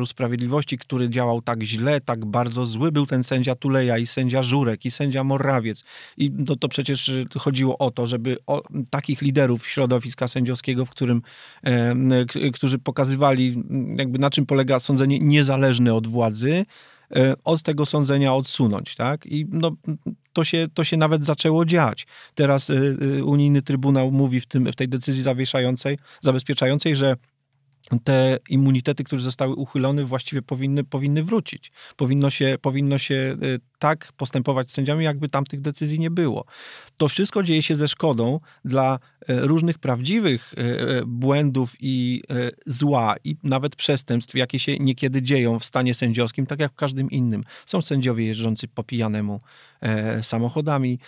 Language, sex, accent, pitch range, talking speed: Polish, male, native, 125-145 Hz, 150 wpm